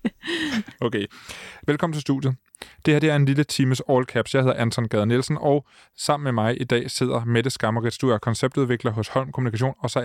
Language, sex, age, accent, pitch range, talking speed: Danish, male, 20-39, native, 115-140 Hz, 210 wpm